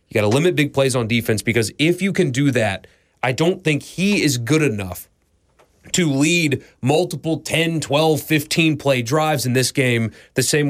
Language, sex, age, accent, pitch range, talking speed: English, male, 30-49, American, 110-145 Hz, 190 wpm